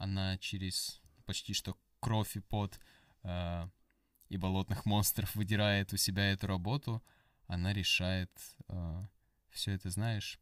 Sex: male